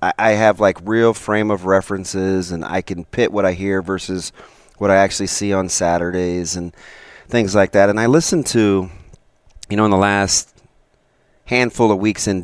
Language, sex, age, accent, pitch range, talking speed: English, male, 30-49, American, 95-120 Hz, 185 wpm